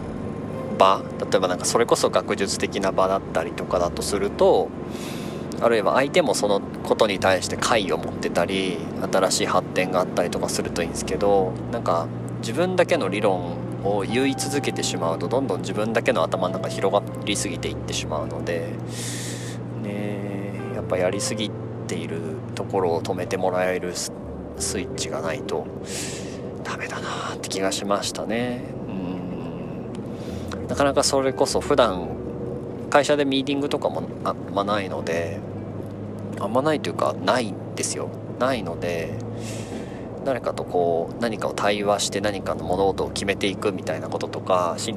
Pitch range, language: 90-115 Hz, Japanese